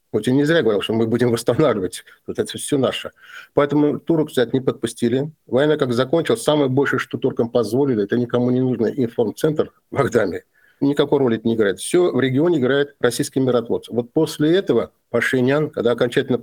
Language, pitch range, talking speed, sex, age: Russian, 115-150 Hz, 185 wpm, male, 50-69